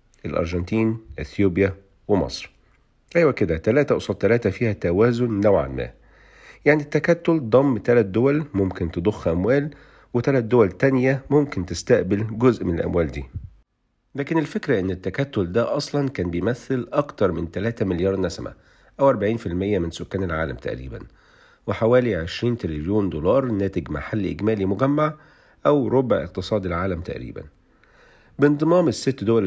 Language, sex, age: Arabic, male, 50-69